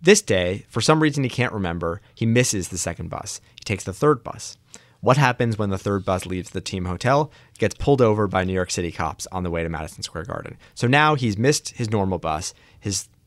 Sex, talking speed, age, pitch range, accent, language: male, 230 wpm, 30-49, 95-120 Hz, American, English